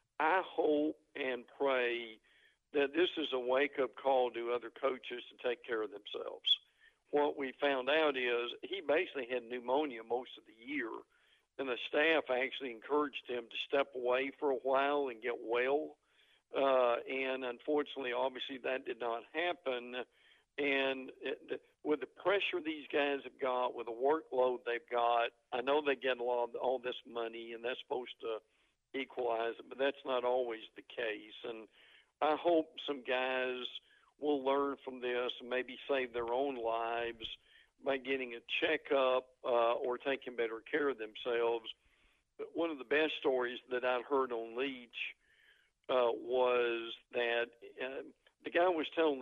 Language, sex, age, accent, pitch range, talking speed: English, male, 50-69, American, 120-150 Hz, 160 wpm